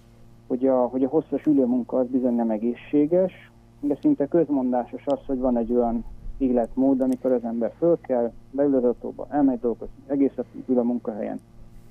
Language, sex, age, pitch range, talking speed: Hungarian, male, 40-59, 115-135 Hz, 155 wpm